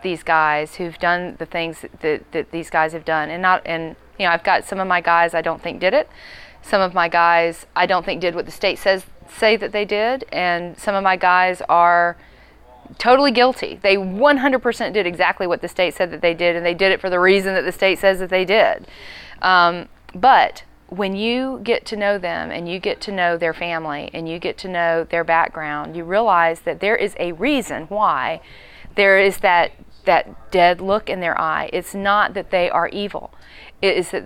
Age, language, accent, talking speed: 40-59, Finnish, American, 220 wpm